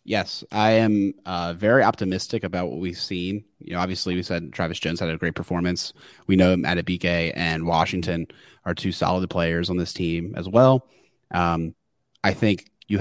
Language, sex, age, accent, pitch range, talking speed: English, male, 30-49, American, 90-105 Hz, 180 wpm